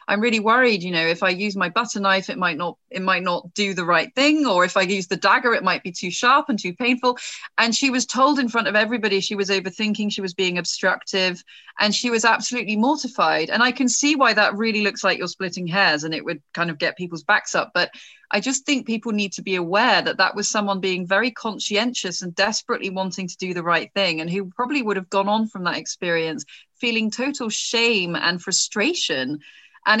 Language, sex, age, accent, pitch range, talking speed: English, female, 30-49, British, 175-215 Hz, 230 wpm